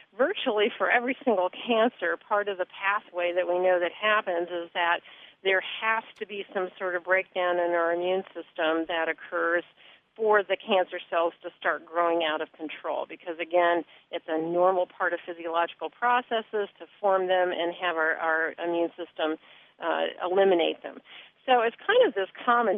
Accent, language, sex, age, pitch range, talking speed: American, English, female, 50-69, 175-225 Hz, 175 wpm